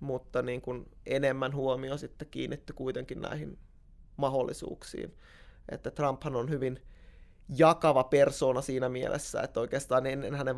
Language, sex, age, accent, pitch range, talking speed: Finnish, male, 20-39, native, 130-140 Hz, 120 wpm